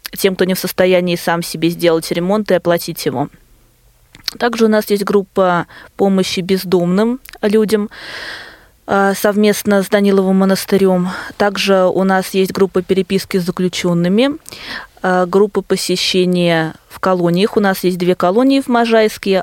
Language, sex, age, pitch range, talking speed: Russian, female, 20-39, 180-210 Hz, 135 wpm